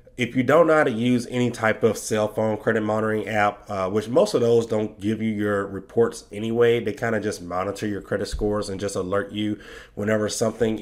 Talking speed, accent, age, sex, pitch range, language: 220 wpm, American, 30-49, male, 105-130 Hz, English